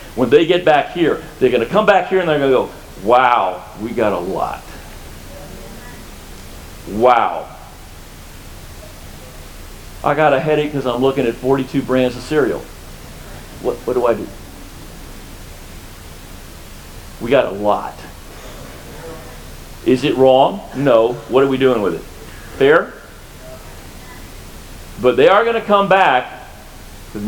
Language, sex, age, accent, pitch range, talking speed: English, male, 40-59, American, 90-145 Hz, 135 wpm